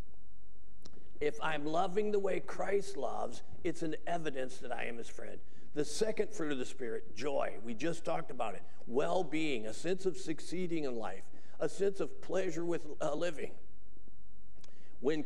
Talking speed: 165 wpm